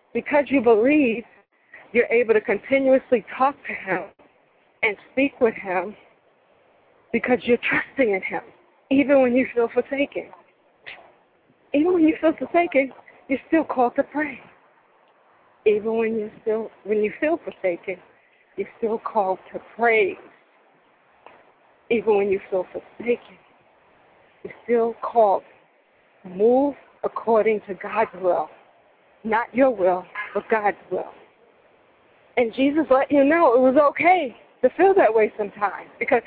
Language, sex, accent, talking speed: English, female, American, 130 wpm